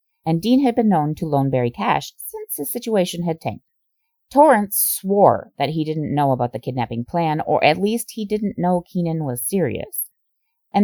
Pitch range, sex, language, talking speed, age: 130-195 Hz, female, English, 190 wpm, 30-49